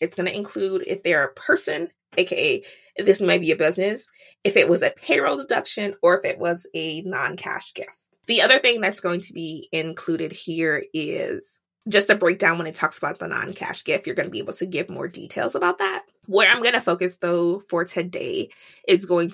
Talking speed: 210 wpm